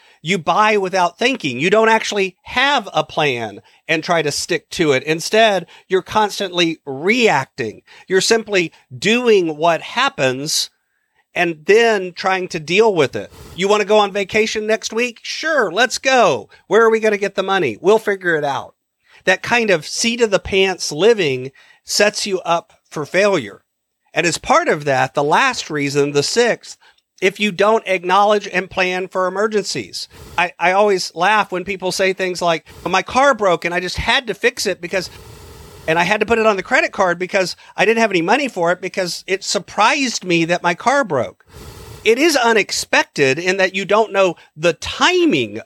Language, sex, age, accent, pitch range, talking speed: English, male, 50-69, American, 170-225 Hz, 185 wpm